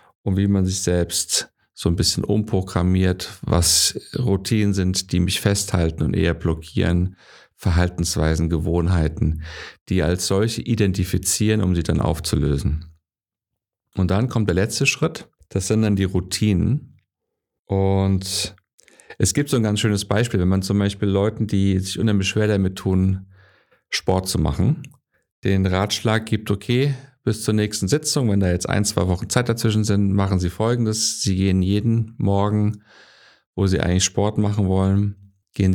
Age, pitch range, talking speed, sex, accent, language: 50-69, 90-110 Hz, 155 wpm, male, German, German